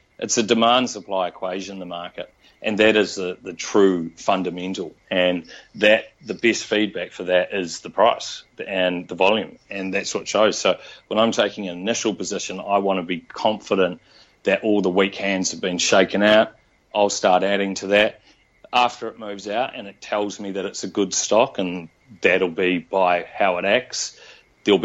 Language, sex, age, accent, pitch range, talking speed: English, male, 40-59, Australian, 90-105 Hz, 185 wpm